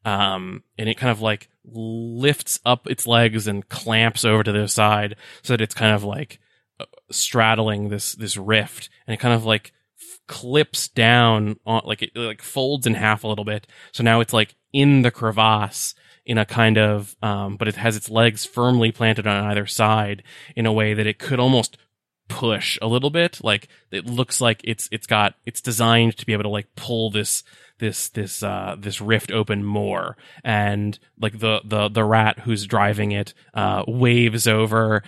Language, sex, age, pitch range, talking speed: English, male, 20-39, 105-115 Hz, 190 wpm